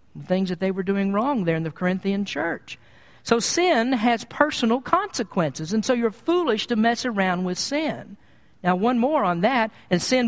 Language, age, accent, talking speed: English, 50-69, American, 185 wpm